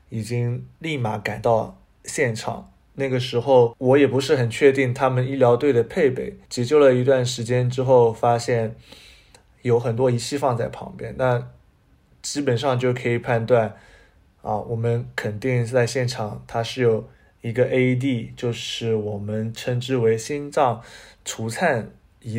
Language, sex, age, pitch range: Chinese, male, 20-39, 115-130 Hz